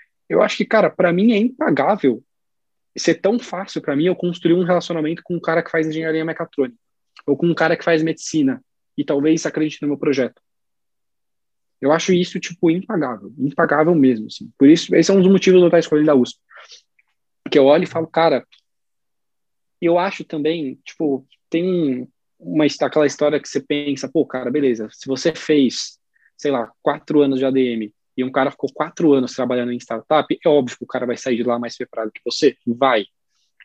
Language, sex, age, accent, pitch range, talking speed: Portuguese, male, 20-39, Brazilian, 130-170 Hz, 200 wpm